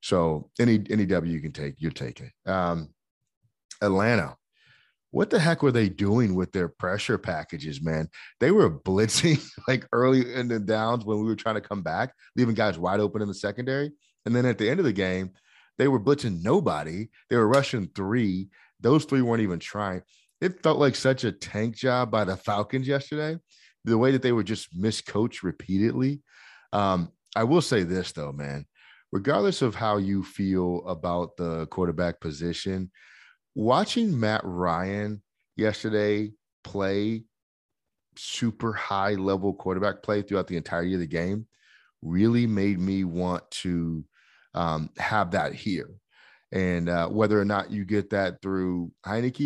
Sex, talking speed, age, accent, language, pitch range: male, 165 wpm, 30-49, American, English, 90-115 Hz